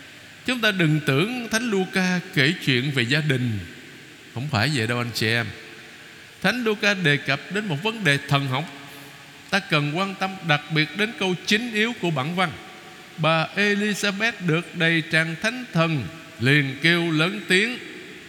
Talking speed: 170 wpm